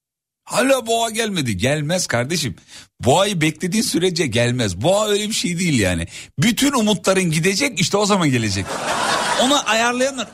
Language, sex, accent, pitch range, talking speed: Turkish, male, native, 105-165 Hz, 140 wpm